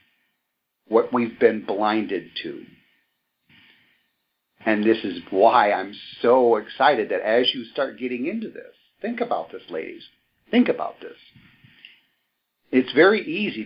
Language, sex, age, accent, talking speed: English, male, 50-69, American, 125 wpm